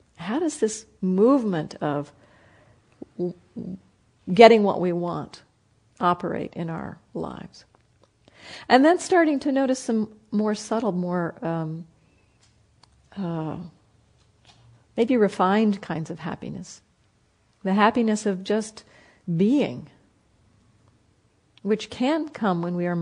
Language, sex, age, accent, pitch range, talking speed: English, female, 50-69, American, 150-210 Hz, 105 wpm